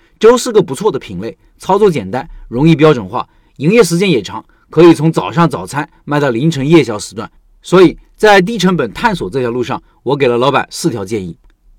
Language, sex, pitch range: Chinese, male, 140-190 Hz